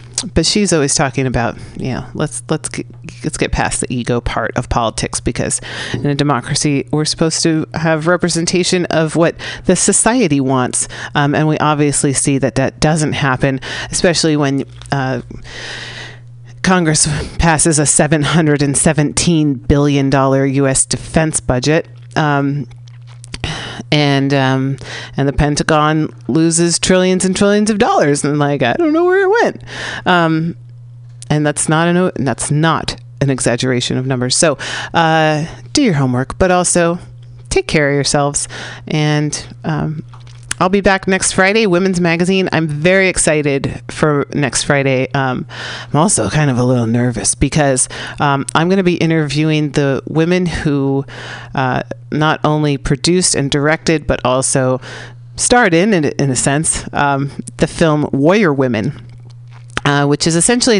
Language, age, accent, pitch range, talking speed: English, 40-59, American, 130-165 Hz, 145 wpm